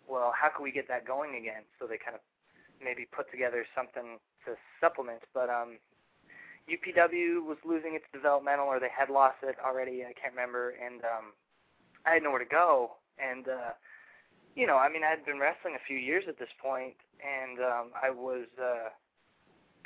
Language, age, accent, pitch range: English, 20-39, American, 120-145 Hz